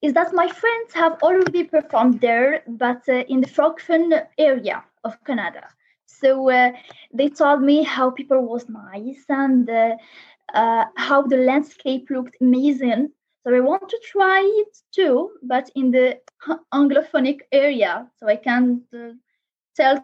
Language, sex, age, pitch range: English, female, 20-39, 245-310 Hz